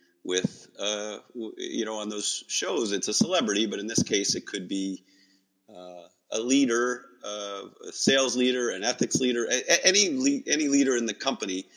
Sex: male